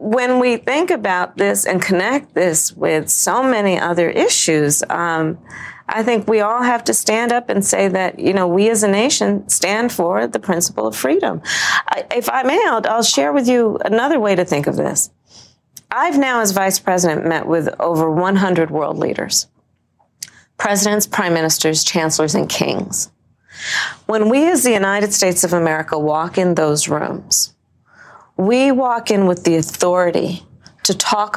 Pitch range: 175-255 Hz